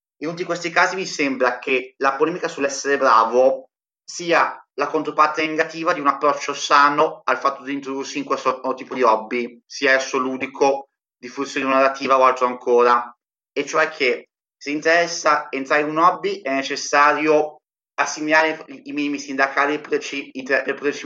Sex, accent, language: male, native, Italian